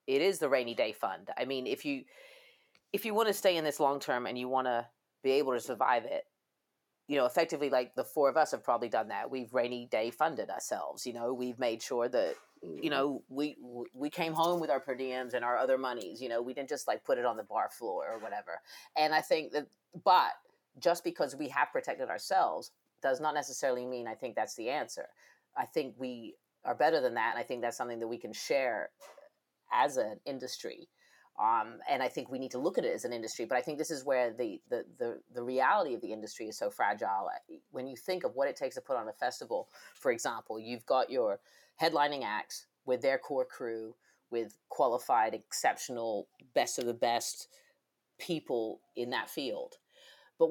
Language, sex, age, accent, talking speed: English, female, 30-49, American, 215 wpm